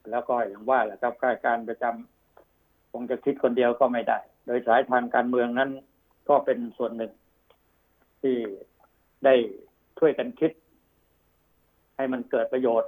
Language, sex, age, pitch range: Thai, male, 60-79, 115-135 Hz